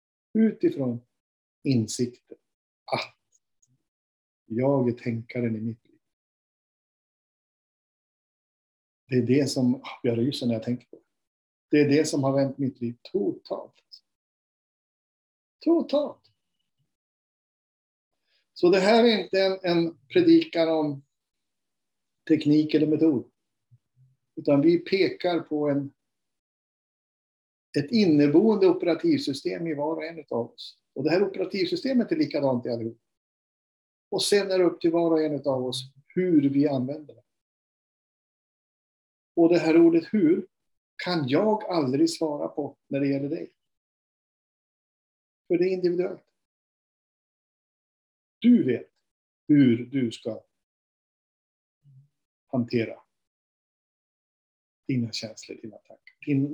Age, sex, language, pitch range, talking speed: 50-69, male, Swedish, 125-180 Hz, 110 wpm